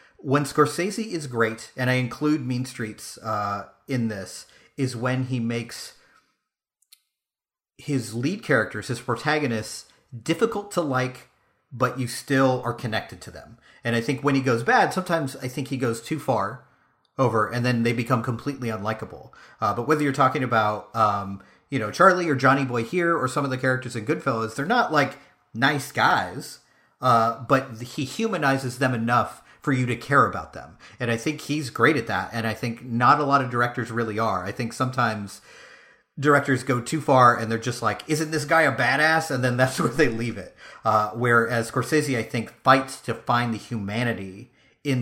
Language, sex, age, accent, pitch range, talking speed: English, male, 40-59, American, 115-140 Hz, 190 wpm